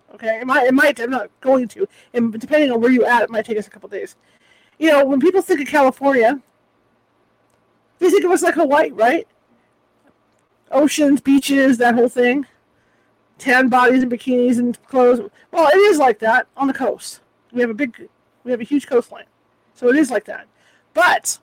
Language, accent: English, American